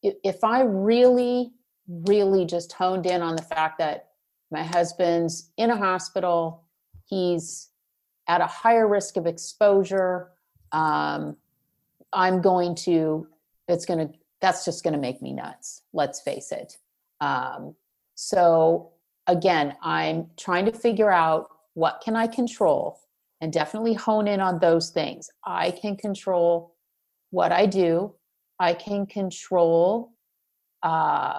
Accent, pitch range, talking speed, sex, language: American, 165-200 Hz, 130 wpm, female, English